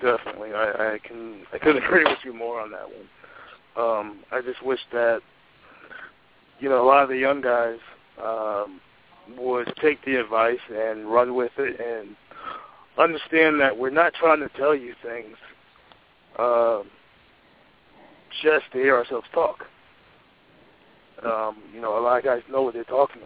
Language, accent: English, American